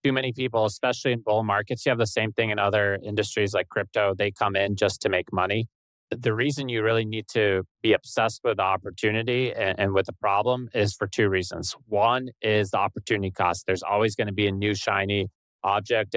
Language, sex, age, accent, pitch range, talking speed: English, male, 30-49, American, 95-110 Hz, 215 wpm